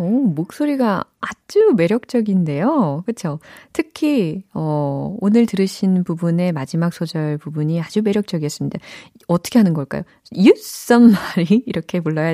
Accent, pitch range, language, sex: native, 155-230 Hz, Korean, female